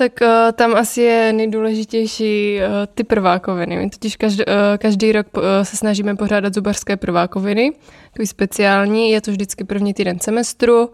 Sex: female